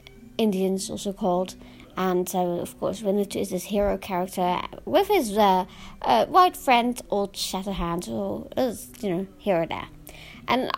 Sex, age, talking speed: female, 40-59, 155 wpm